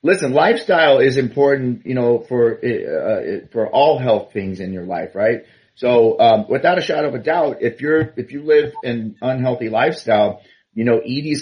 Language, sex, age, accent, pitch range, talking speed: English, male, 30-49, American, 110-130 Hz, 190 wpm